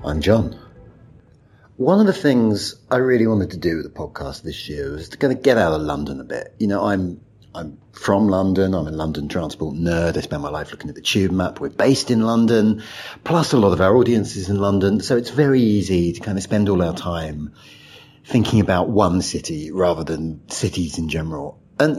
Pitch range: 90-130 Hz